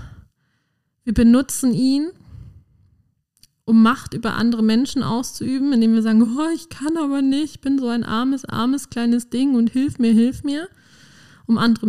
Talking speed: 160 wpm